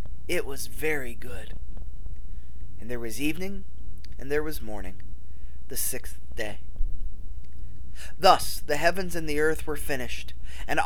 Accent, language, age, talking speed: American, English, 20-39, 135 wpm